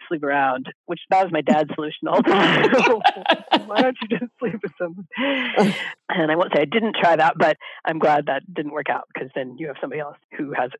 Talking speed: 215 wpm